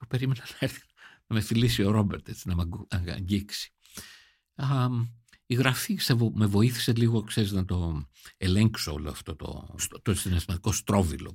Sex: male